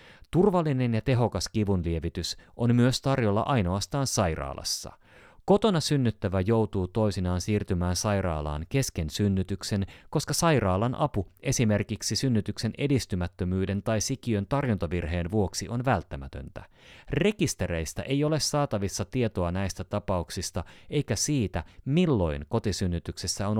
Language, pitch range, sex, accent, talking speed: Finnish, 90-135 Hz, male, native, 105 wpm